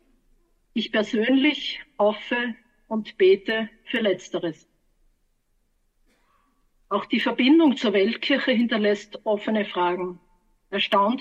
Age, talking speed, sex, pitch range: 50-69, 85 wpm, female, 200-240 Hz